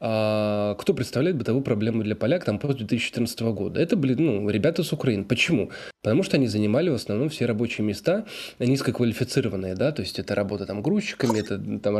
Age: 20-39